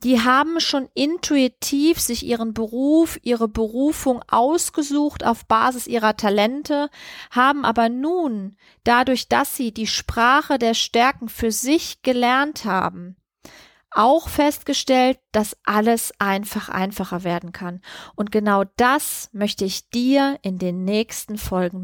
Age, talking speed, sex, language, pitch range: 30-49, 125 wpm, female, German, 220-275 Hz